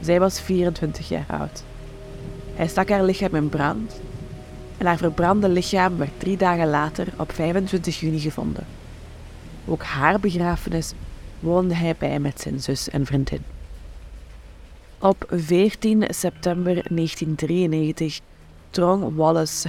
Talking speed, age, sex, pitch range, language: 120 wpm, 20-39, female, 110-175 Hz, Dutch